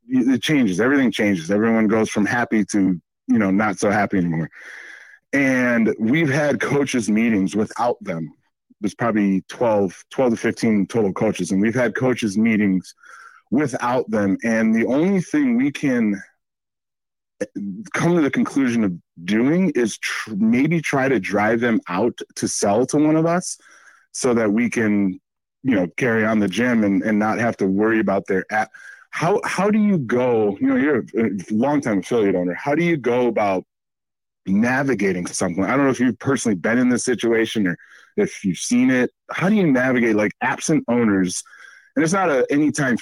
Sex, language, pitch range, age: male, English, 105-165 Hz, 30-49